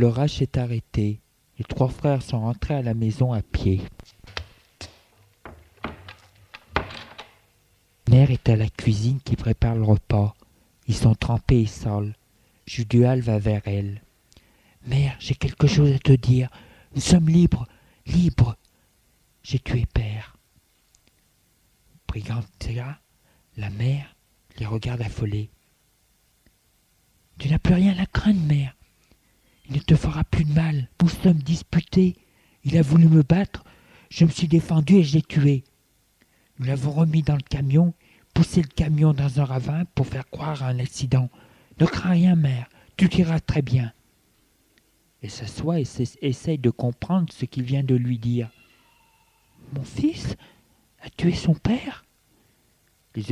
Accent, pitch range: French, 110-150 Hz